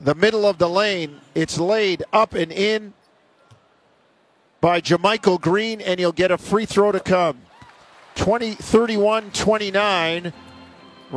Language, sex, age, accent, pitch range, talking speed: English, male, 50-69, American, 180-205 Hz, 120 wpm